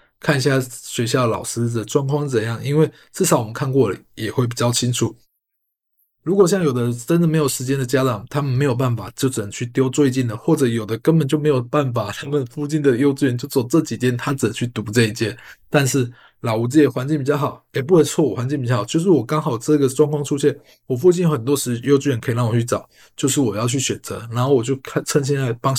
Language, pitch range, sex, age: Chinese, 120-145 Hz, male, 20-39